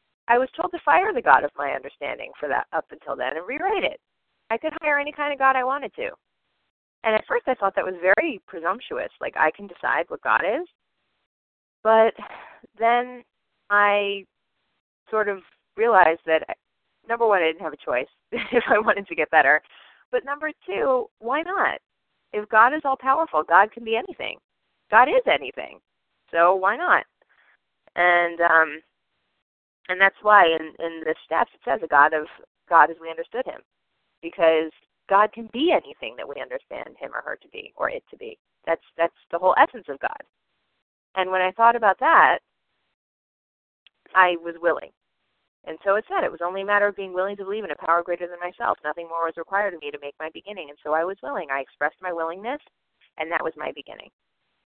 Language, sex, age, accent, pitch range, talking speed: English, female, 30-49, American, 170-255 Hz, 195 wpm